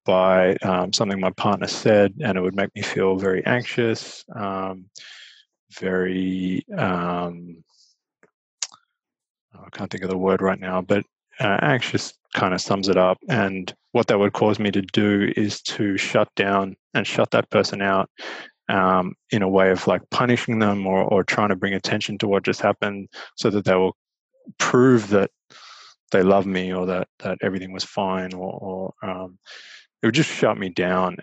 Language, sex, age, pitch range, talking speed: English, male, 20-39, 95-105 Hz, 175 wpm